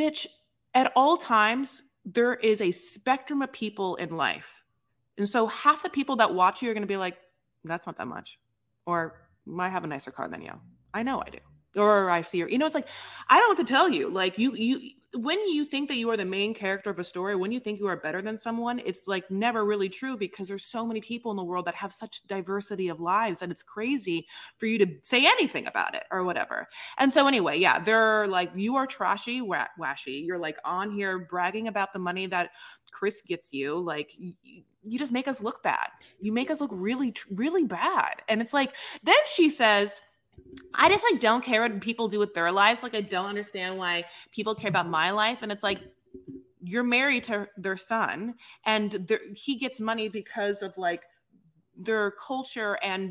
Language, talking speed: English, 215 wpm